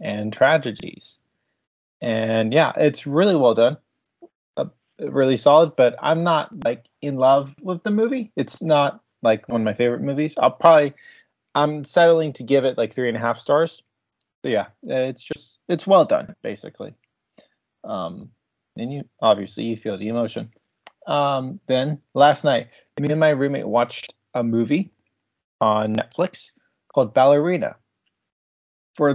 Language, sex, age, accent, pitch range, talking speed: English, male, 20-39, American, 115-150 Hz, 150 wpm